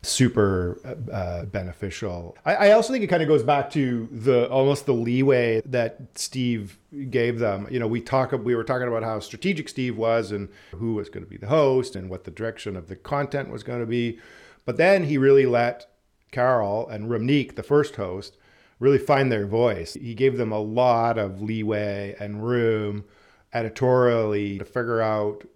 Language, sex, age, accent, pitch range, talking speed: English, male, 40-59, American, 105-125 Hz, 190 wpm